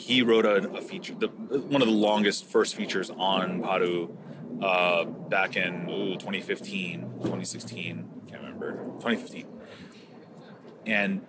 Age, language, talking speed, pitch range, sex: 30-49, English, 130 wpm, 95-110 Hz, male